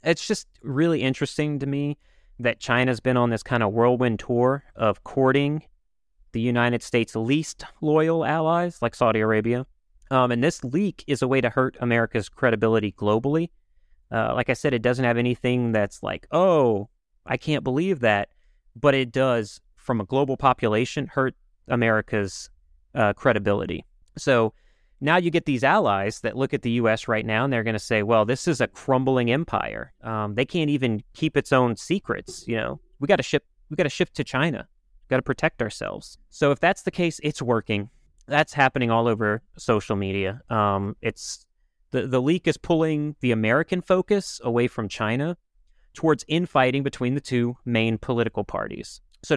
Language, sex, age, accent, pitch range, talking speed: English, male, 30-49, American, 115-150 Hz, 180 wpm